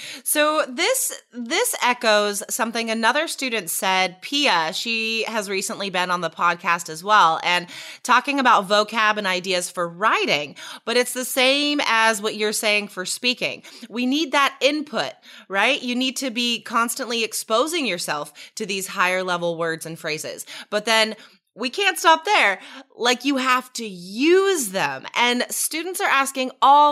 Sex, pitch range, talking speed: female, 215-300 Hz, 160 wpm